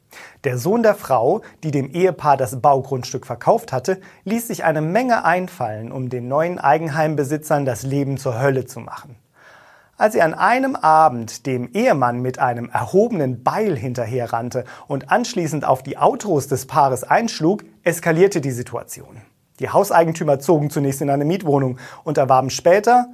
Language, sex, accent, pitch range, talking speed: German, male, German, 130-170 Hz, 155 wpm